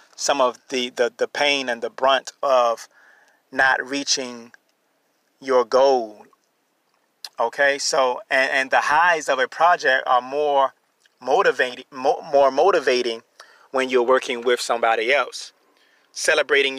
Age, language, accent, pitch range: 30-49, English, American, 125-150 Hz